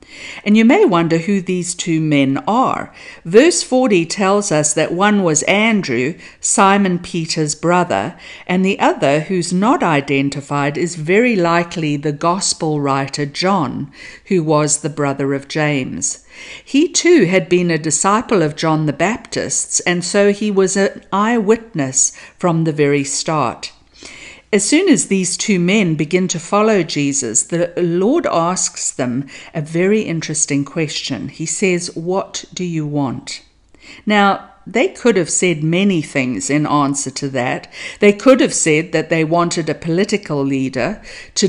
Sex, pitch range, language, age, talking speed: female, 150-200 Hz, English, 50-69, 150 wpm